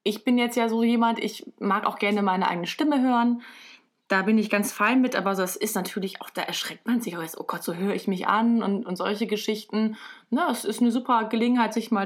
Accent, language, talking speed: German, German, 250 wpm